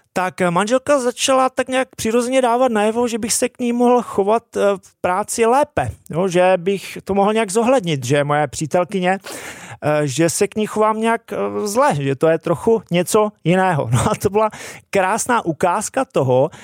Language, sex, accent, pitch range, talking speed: Czech, male, native, 160-200 Hz, 165 wpm